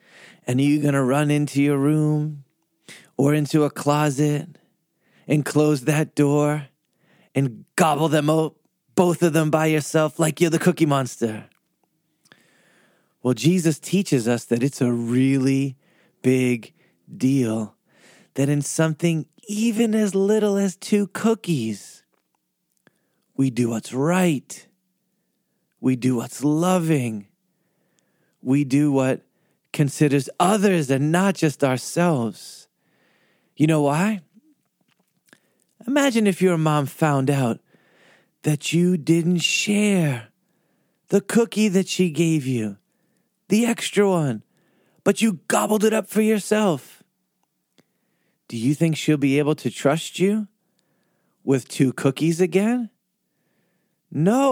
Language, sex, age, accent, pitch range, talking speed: English, male, 30-49, American, 140-195 Hz, 120 wpm